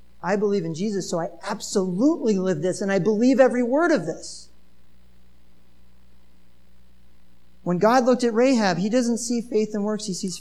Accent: American